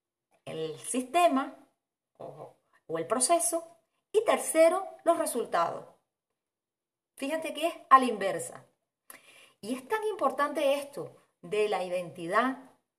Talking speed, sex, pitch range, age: 110 wpm, female, 225-325 Hz, 30-49